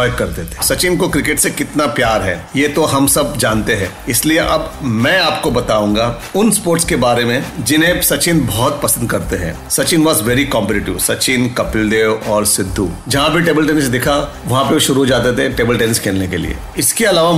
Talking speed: 50 wpm